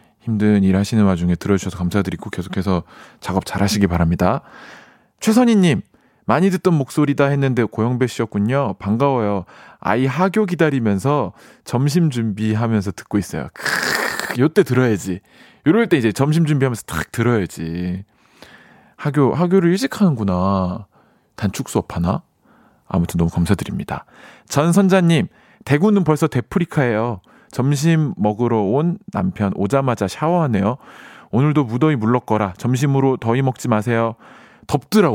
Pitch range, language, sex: 100-155 Hz, Korean, male